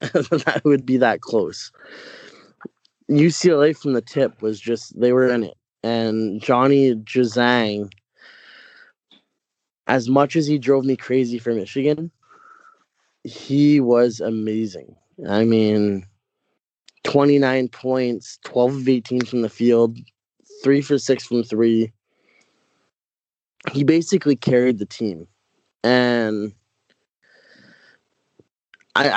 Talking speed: 105 wpm